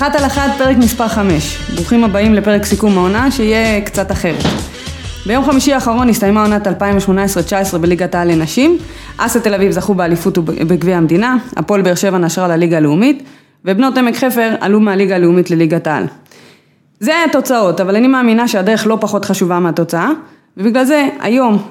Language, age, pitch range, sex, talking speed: English, 20-39, 180-240 Hz, female, 160 wpm